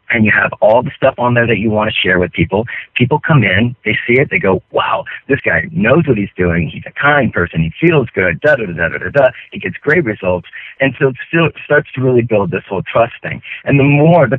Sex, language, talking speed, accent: male, English, 265 wpm, American